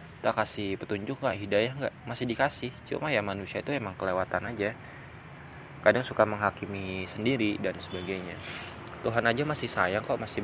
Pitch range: 100-130 Hz